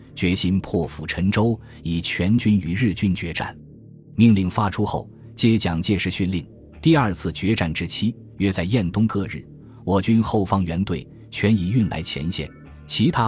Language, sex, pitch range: Chinese, male, 90-115 Hz